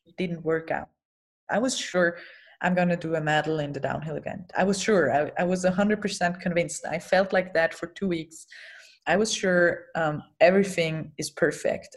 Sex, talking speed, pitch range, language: female, 195 wpm, 165-200 Hz, English